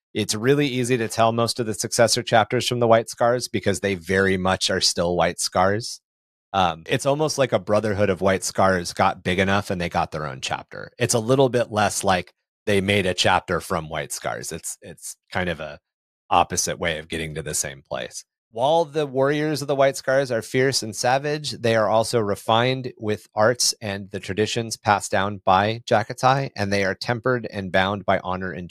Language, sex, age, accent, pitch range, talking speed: English, male, 30-49, American, 95-115 Hz, 205 wpm